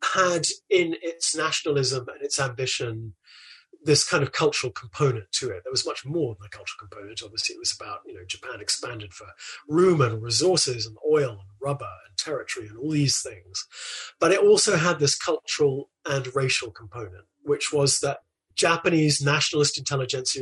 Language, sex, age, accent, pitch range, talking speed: English, male, 30-49, British, 125-165 Hz, 175 wpm